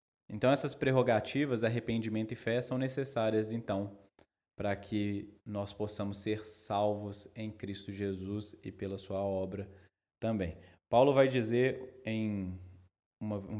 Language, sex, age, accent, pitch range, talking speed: Portuguese, male, 20-39, Brazilian, 100-130 Hz, 125 wpm